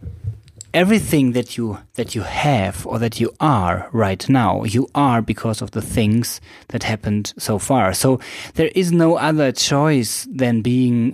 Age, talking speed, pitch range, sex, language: 20-39, 160 wpm, 105-125 Hz, male, English